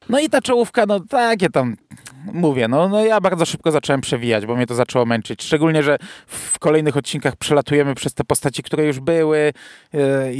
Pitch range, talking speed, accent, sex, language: 140-175 Hz, 190 wpm, native, male, Polish